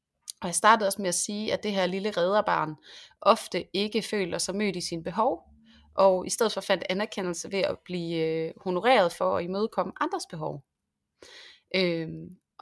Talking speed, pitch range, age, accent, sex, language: 175 wpm, 170-210 Hz, 30-49, native, female, Danish